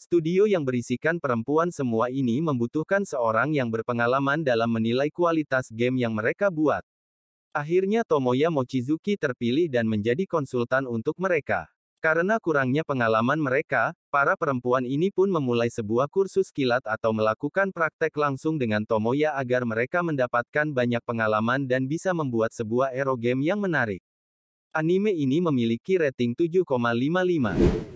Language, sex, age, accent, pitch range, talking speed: Indonesian, male, 30-49, native, 120-170 Hz, 135 wpm